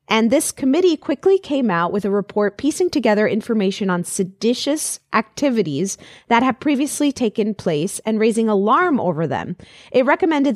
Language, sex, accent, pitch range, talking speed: English, female, American, 195-250 Hz, 155 wpm